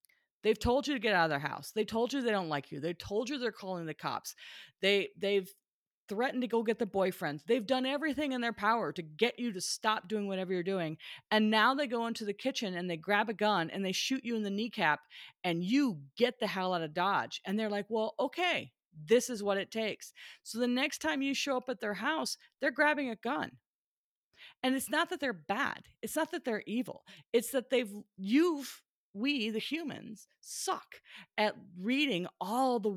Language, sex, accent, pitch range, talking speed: English, female, American, 190-255 Hz, 215 wpm